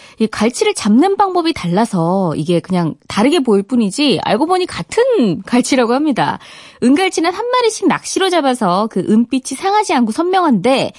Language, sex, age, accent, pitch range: Korean, female, 20-39, native, 190-300 Hz